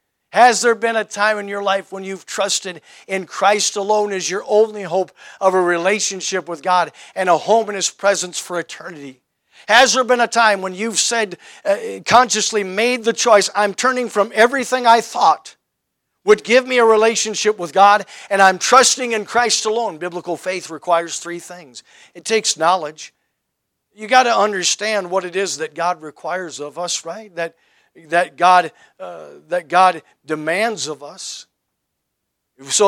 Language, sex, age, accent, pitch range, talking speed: English, male, 50-69, American, 165-210 Hz, 170 wpm